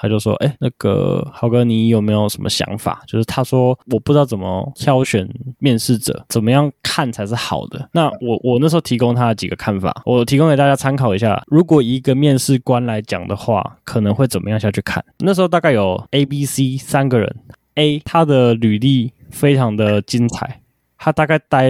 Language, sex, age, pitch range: Chinese, male, 20-39, 110-140 Hz